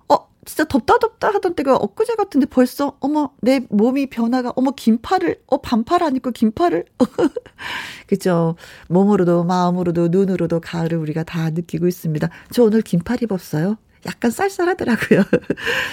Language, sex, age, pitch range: Korean, female, 40-59, 180-280 Hz